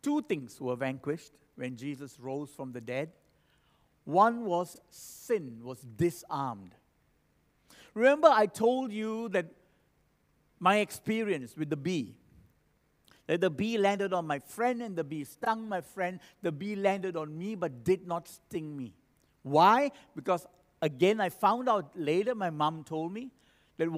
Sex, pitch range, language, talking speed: male, 145-210 Hz, English, 150 wpm